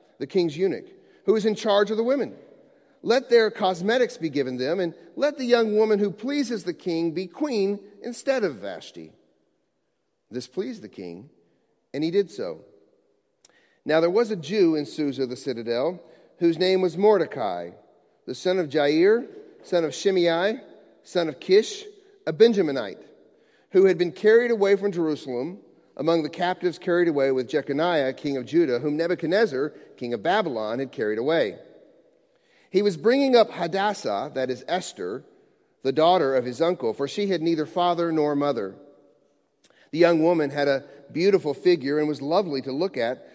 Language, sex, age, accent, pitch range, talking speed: English, male, 40-59, American, 145-220 Hz, 170 wpm